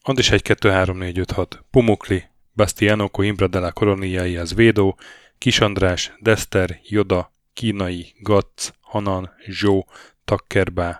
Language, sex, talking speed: Hungarian, male, 125 wpm